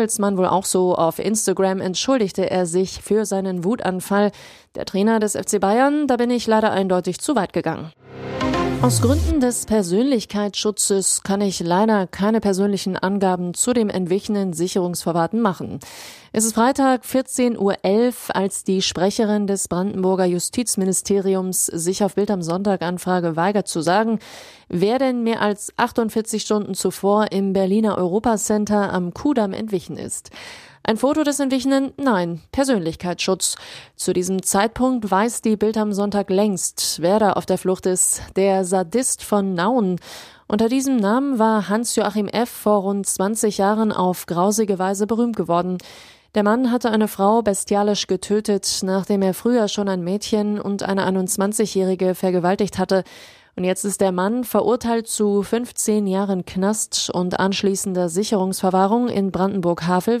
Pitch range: 185-220 Hz